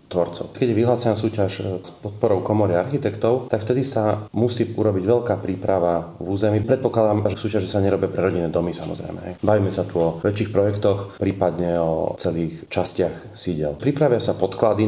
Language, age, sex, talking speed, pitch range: Slovak, 30-49, male, 160 wpm, 95-110 Hz